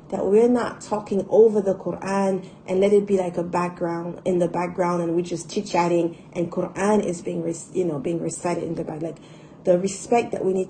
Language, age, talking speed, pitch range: English, 30-49, 220 wpm, 175-205 Hz